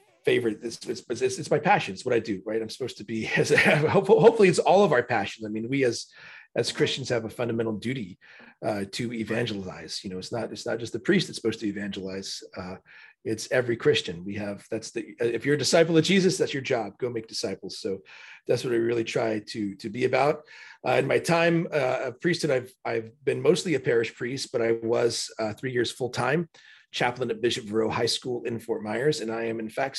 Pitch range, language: 105-130 Hz, English